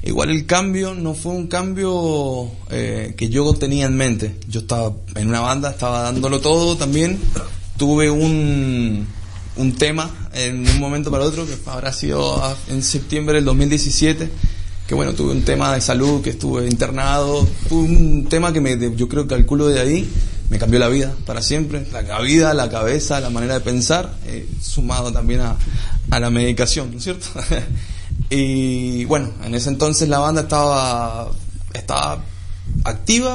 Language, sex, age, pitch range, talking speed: Spanish, male, 20-39, 105-145 Hz, 170 wpm